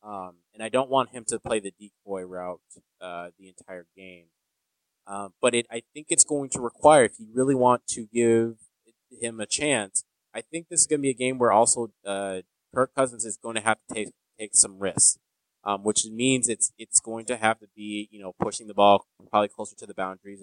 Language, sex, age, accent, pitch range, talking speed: English, male, 20-39, American, 95-115 Hz, 225 wpm